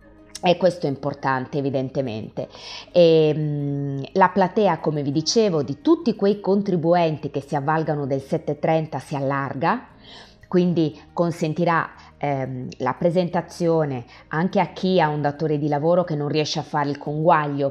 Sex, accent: female, native